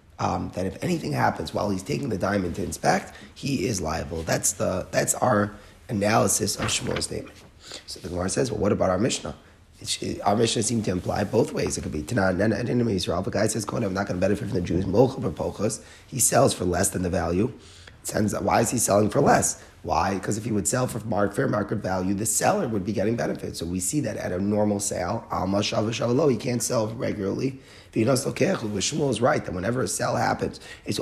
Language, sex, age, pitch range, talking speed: English, male, 30-49, 95-115 Hz, 220 wpm